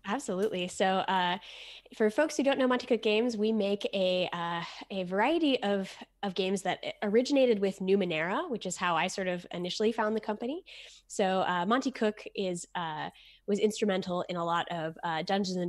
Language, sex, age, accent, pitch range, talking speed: English, female, 10-29, American, 175-215 Hz, 185 wpm